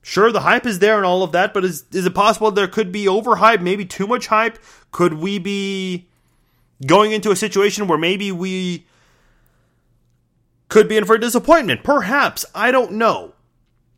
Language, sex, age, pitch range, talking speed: English, male, 30-49, 130-200 Hz, 180 wpm